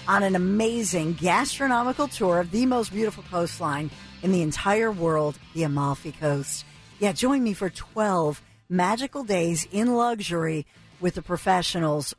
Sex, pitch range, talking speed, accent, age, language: female, 165-215 Hz, 145 wpm, American, 50-69, English